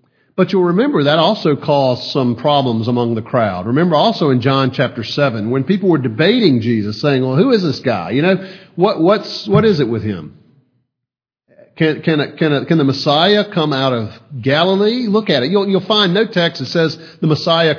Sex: male